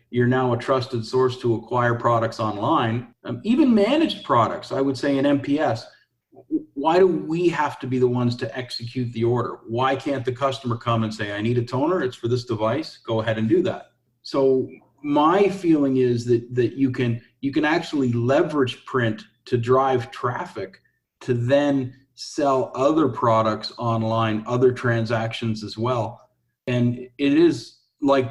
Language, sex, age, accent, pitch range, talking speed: English, male, 40-59, American, 115-135 Hz, 170 wpm